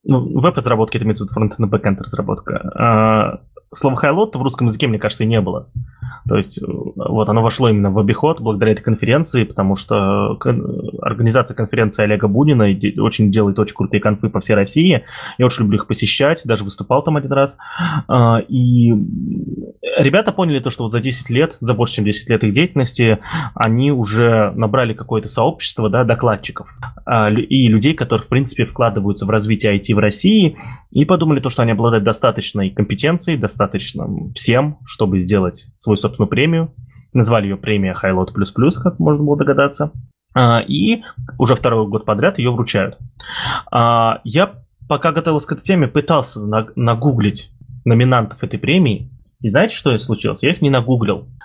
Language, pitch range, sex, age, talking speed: Russian, 110-135 Hz, male, 20-39, 160 wpm